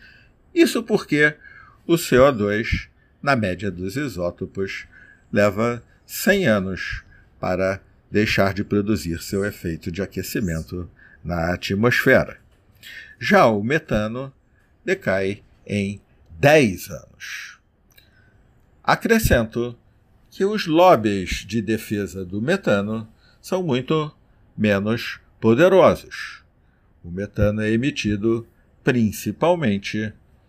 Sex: male